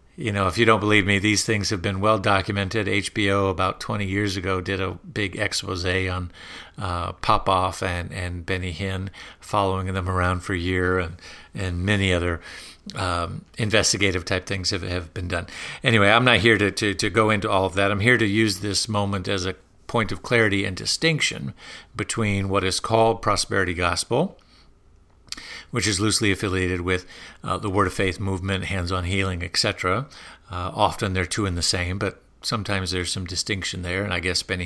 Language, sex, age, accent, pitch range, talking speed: English, male, 50-69, American, 95-110 Hz, 190 wpm